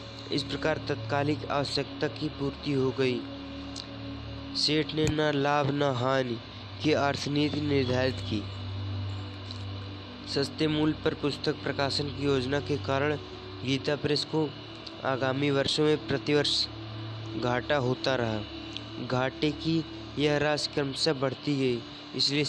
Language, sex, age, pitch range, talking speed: Hindi, male, 20-39, 95-145 Hz, 120 wpm